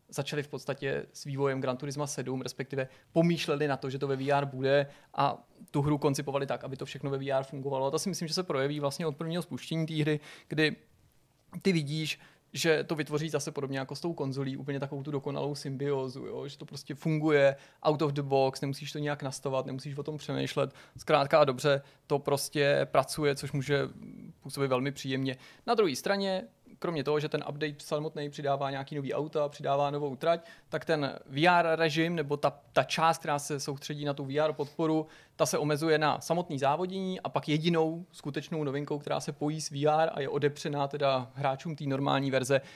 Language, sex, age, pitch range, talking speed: Czech, male, 30-49, 135-155 Hz, 200 wpm